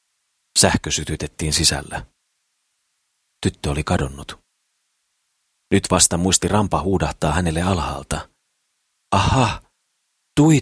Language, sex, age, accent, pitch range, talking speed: Finnish, male, 40-59, native, 80-100 Hz, 85 wpm